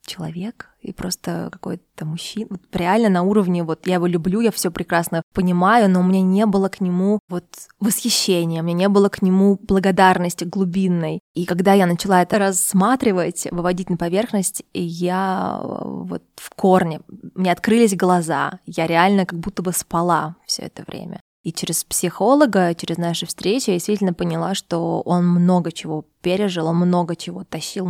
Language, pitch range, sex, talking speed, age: Russian, 175-190 Hz, female, 165 wpm, 20-39